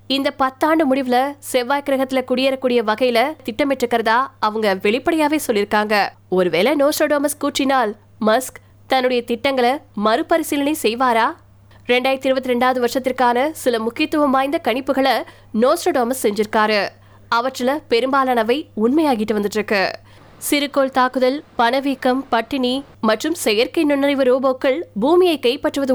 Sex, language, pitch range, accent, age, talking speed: female, Tamil, 230-280 Hz, native, 20-39, 55 wpm